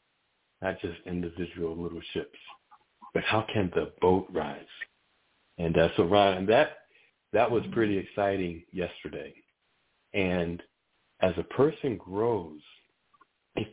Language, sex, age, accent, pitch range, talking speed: English, male, 60-79, American, 85-105 Hz, 120 wpm